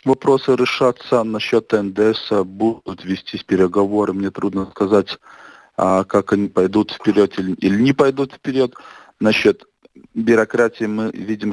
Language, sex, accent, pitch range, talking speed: Russian, male, native, 100-110 Hz, 115 wpm